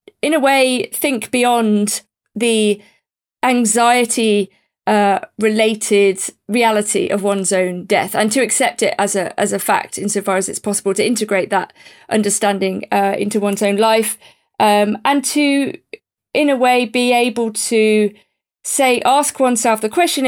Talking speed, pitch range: 145 wpm, 205-250 Hz